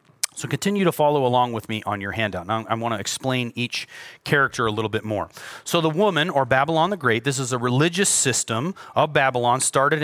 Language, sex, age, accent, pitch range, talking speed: English, male, 30-49, American, 120-170 Hz, 215 wpm